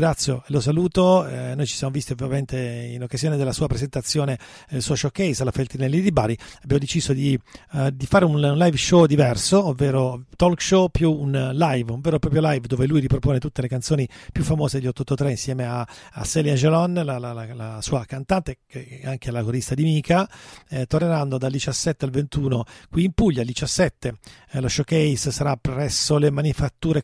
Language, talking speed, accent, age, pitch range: Italian, 195 wpm, native, 40-59, 130-160 Hz